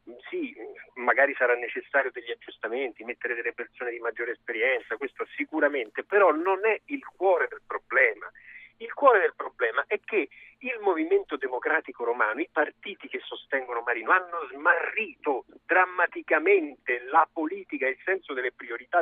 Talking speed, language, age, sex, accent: 140 wpm, Italian, 50-69, male, native